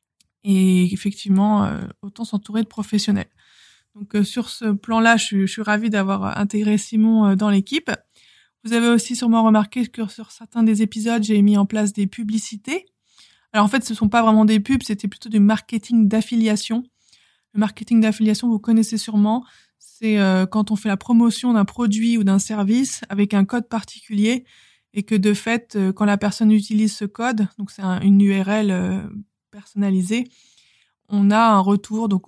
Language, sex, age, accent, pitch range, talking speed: French, female, 20-39, French, 195-220 Hz, 170 wpm